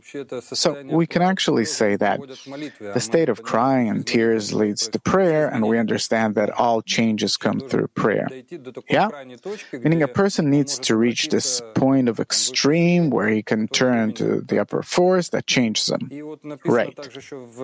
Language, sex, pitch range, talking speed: English, male, 110-140 Hz, 160 wpm